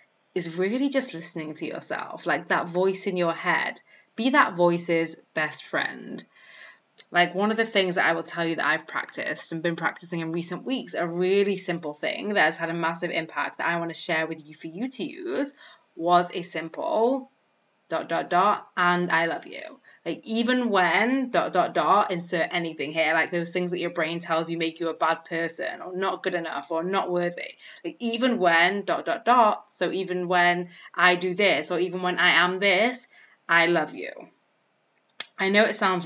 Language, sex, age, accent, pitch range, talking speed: English, female, 20-39, British, 170-205 Hz, 200 wpm